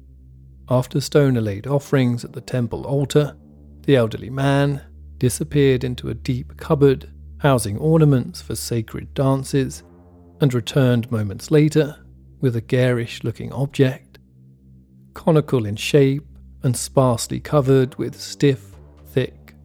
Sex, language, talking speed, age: male, English, 115 wpm, 40-59